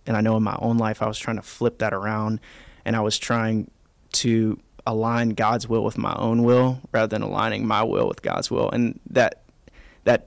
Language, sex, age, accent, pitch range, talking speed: English, male, 20-39, American, 110-120 Hz, 215 wpm